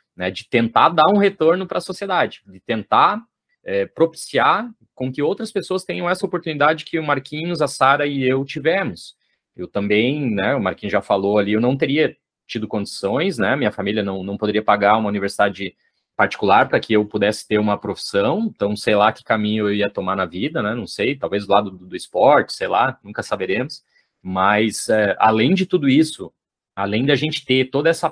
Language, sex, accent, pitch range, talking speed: Portuguese, male, Brazilian, 100-155 Hz, 195 wpm